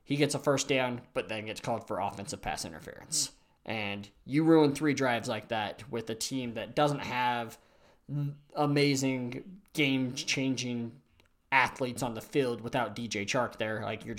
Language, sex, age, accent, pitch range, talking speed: English, male, 20-39, American, 110-145 Hz, 160 wpm